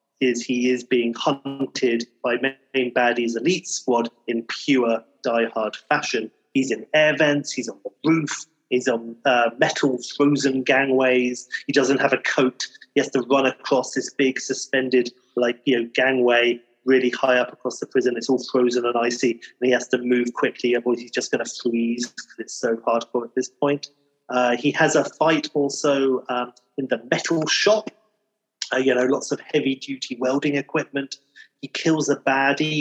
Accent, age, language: British, 30-49, English